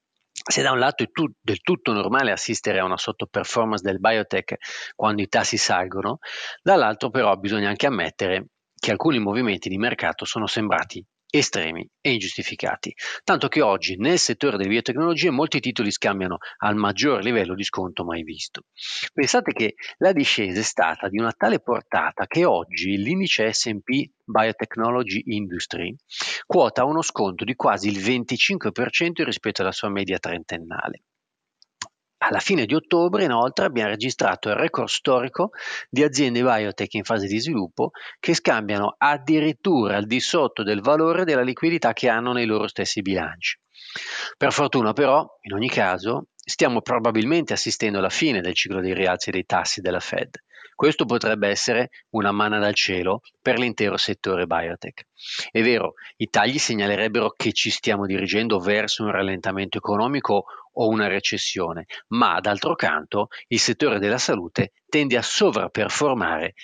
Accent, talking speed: native, 150 wpm